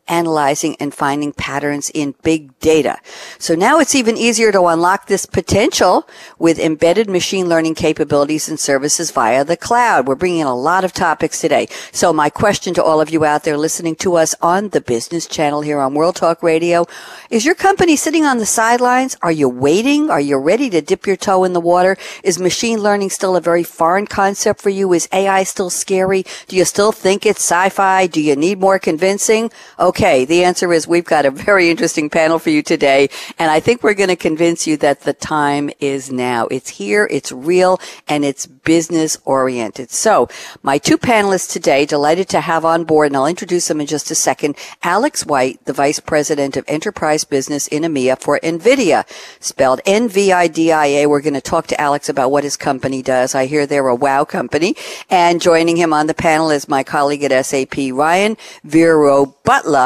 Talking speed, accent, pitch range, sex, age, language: 195 wpm, American, 145-190 Hz, female, 60-79, English